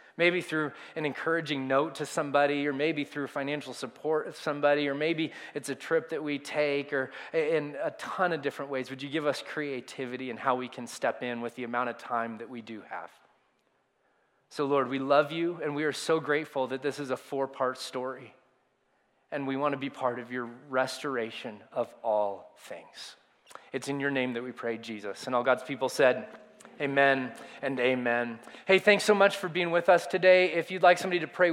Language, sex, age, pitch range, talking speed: English, male, 30-49, 135-195 Hz, 205 wpm